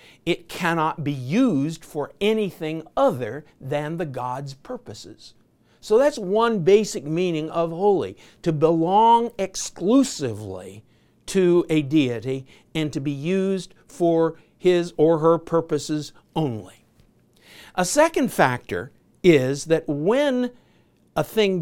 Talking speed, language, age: 115 wpm, English, 60-79